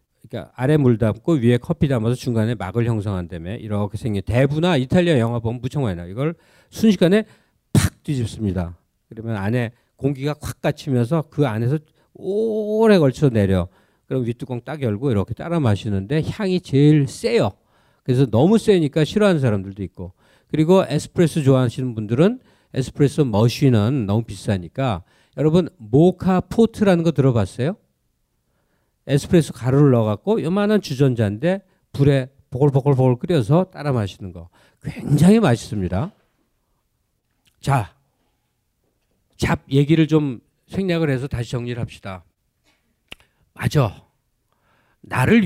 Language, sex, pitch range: Korean, male, 110-165 Hz